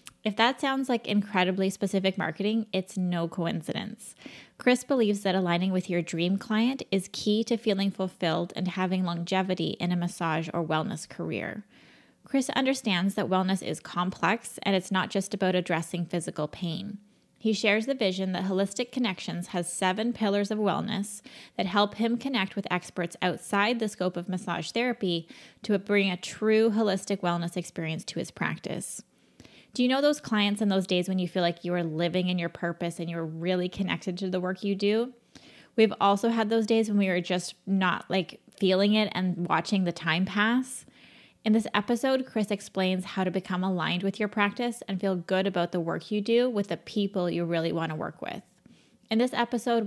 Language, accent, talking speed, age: English, American, 190 wpm, 20-39